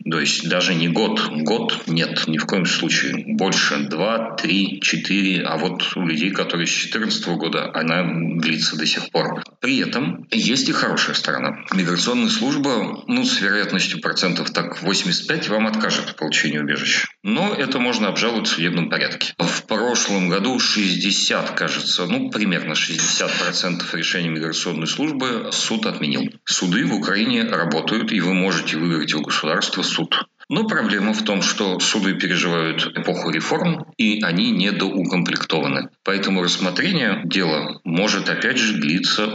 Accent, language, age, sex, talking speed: native, Russian, 40-59, male, 150 wpm